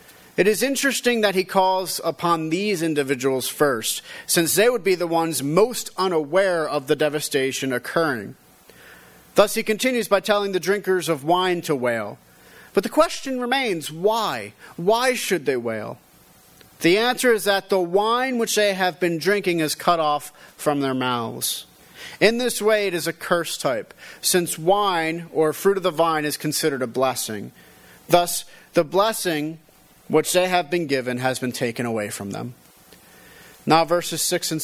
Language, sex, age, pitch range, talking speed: English, male, 40-59, 150-200 Hz, 165 wpm